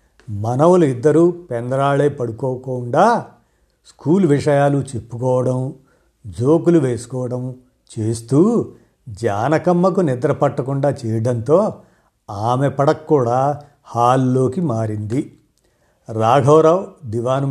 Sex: male